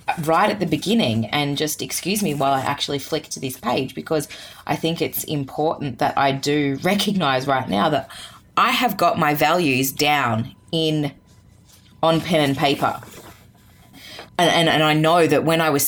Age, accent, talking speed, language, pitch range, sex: 20-39, Australian, 180 wpm, English, 135-165 Hz, female